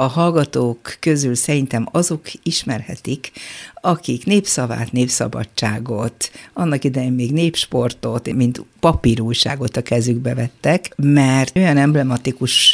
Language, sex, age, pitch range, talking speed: Hungarian, female, 60-79, 120-160 Hz, 100 wpm